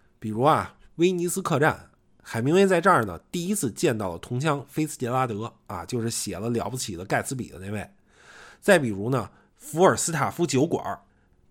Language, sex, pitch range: Chinese, male, 110-155 Hz